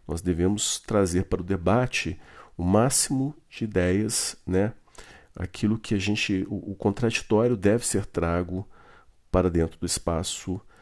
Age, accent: 40-59, Brazilian